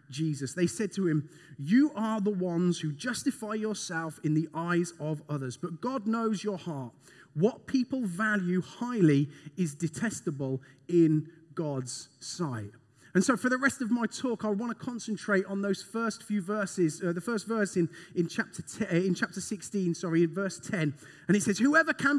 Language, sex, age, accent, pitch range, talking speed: English, male, 30-49, British, 165-240 Hz, 185 wpm